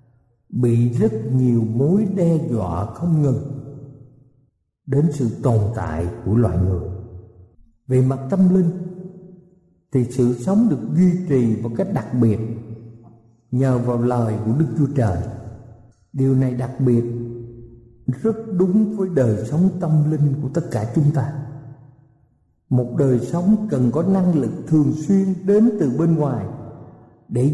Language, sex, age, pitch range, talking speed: Vietnamese, male, 60-79, 115-170 Hz, 145 wpm